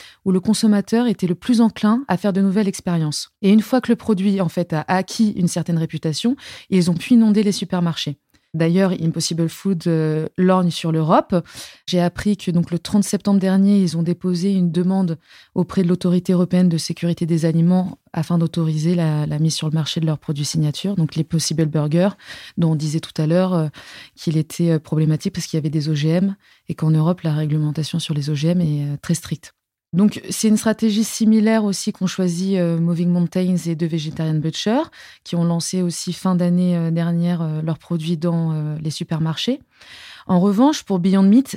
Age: 20-39